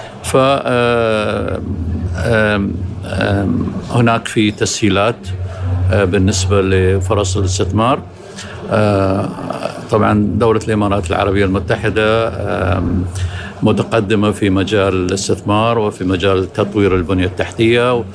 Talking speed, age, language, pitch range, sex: 65 wpm, 60-79, Arabic, 95-110 Hz, male